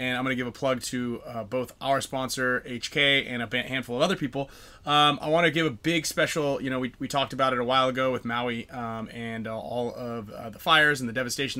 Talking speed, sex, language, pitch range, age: 260 wpm, male, English, 125-145 Hz, 20-39